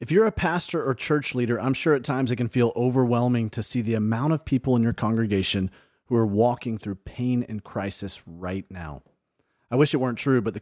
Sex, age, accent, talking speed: male, 30-49, American, 225 wpm